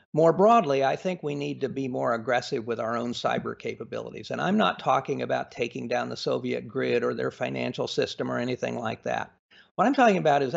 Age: 50-69